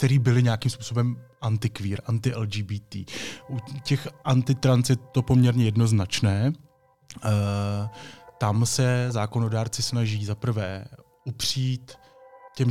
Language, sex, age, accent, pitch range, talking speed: Czech, male, 20-39, native, 110-130 Hz, 90 wpm